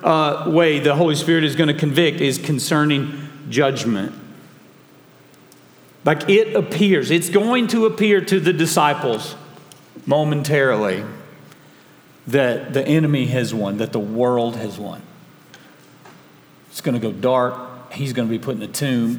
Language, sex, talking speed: English, male, 145 wpm